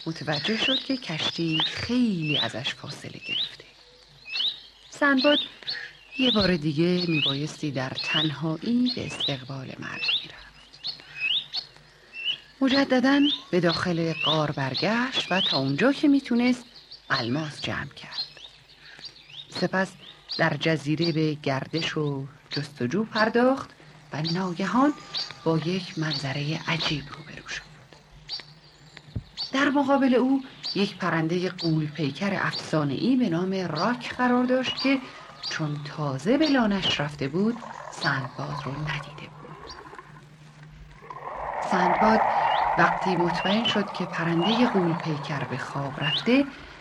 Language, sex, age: Persian, female, 40-59